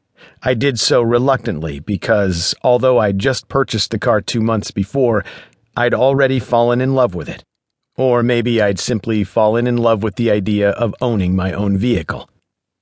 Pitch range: 105-130 Hz